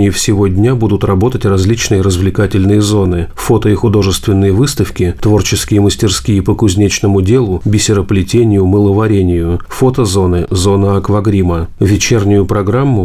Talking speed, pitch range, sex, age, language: 110 wpm, 95-110 Hz, male, 40-59, Russian